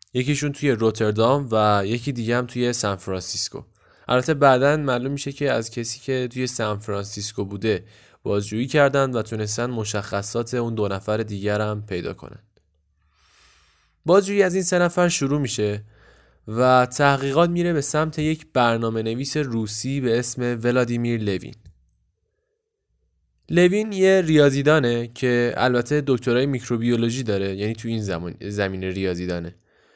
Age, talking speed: 10-29, 135 wpm